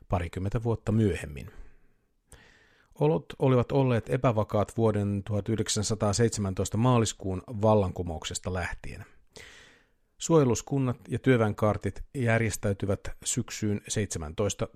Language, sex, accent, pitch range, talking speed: Finnish, male, native, 100-120 Hz, 75 wpm